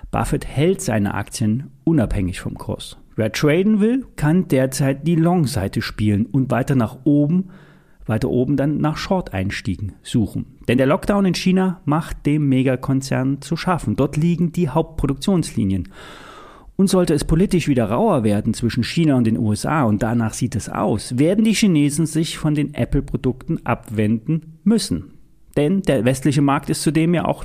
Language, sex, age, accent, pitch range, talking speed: German, male, 30-49, German, 115-170 Hz, 165 wpm